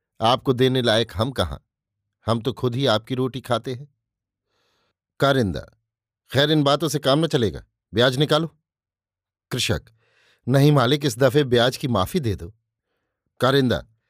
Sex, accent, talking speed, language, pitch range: male, native, 145 wpm, Hindi, 115-150 Hz